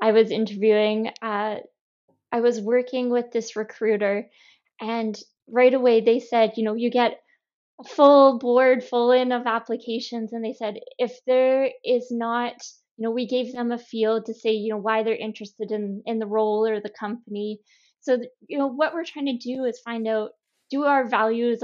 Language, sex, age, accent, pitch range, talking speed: English, female, 10-29, American, 220-265 Hz, 190 wpm